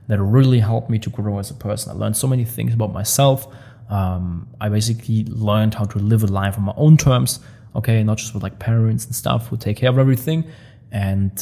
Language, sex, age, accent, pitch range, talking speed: English, male, 20-39, German, 110-125 Hz, 230 wpm